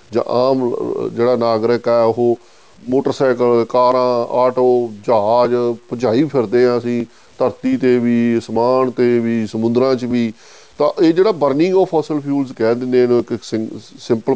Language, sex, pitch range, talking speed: Punjabi, male, 115-140 Hz, 145 wpm